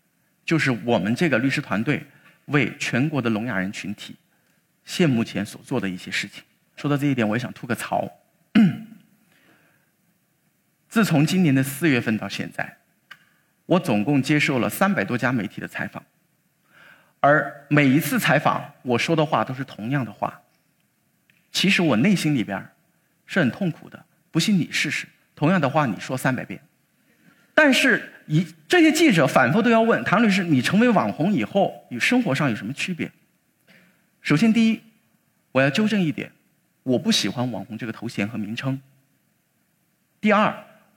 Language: Chinese